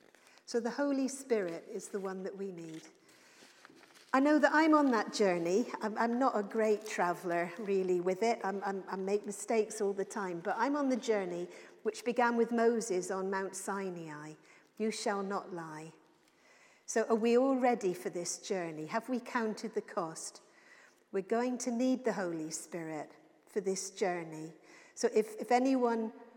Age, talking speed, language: 50-69, 170 wpm, English